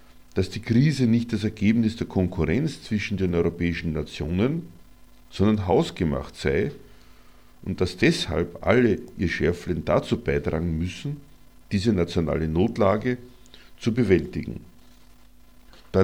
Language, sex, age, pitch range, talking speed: German, male, 50-69, 85-115 Hz, 110 wpm